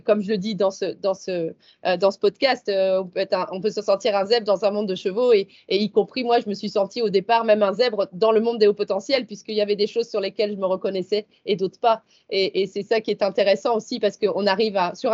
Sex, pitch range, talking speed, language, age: female, 195-230 Hz, 285 wpm, French, 20-39